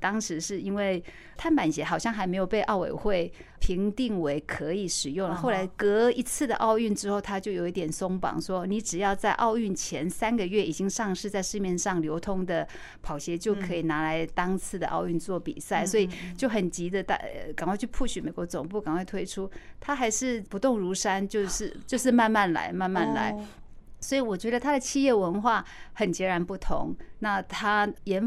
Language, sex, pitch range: Chinese, female, 175-220 Hz